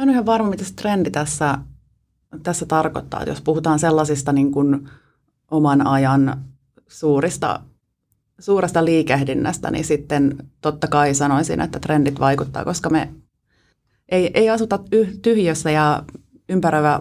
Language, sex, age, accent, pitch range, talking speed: Finnish, female, 30-49, native, 140-165 Hz, 125 wpm